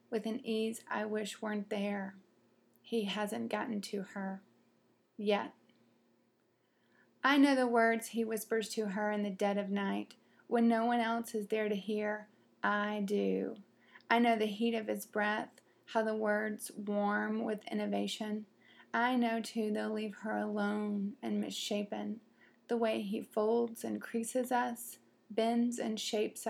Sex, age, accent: female, 30-49, American